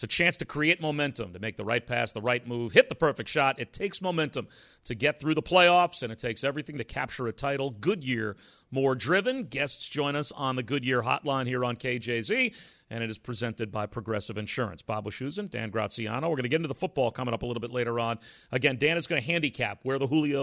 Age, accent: 40-59, American